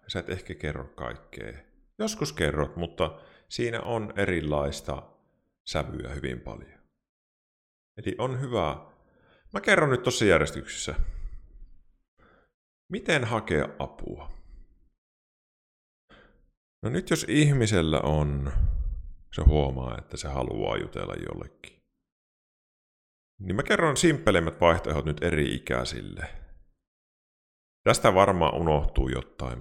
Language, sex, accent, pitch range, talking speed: Finnish, male, native, 70-95 Hz, 100 wpm